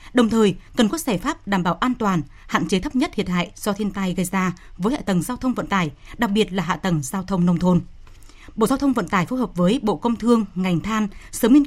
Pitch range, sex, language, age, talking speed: 185-235 Hz, female, Vietnamese, 20-39, 265 wpm